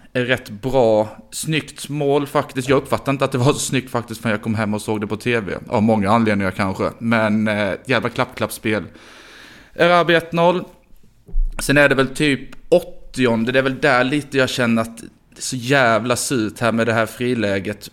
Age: 20-39